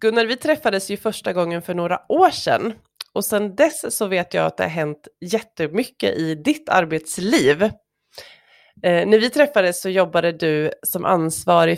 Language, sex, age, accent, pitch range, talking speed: Swedish, female, 20-39, native, 165-220 Hz, 170 wpm